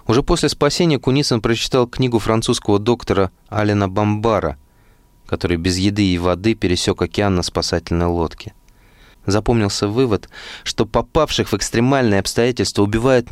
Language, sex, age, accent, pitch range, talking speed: Russian, male, 20-39, native, 85-115 Hz, 125 wpm